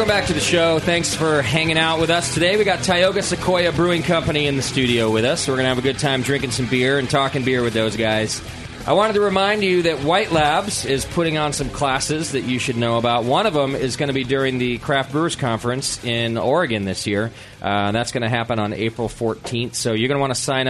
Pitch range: 105-140 Hz